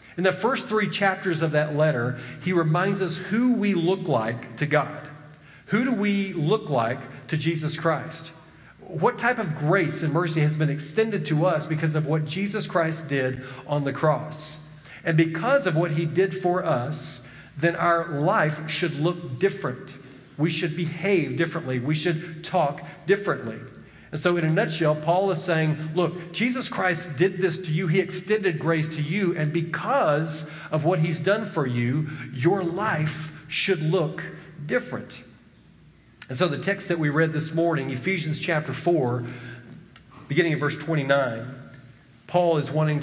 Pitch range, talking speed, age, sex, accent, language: 145-180 Hz, 165 wpm, 40-59, male, American, English